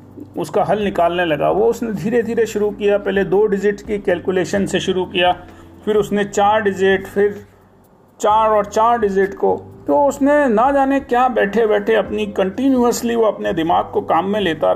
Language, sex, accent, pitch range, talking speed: Hindi, male, native, 160-215 Hz, 180 wpm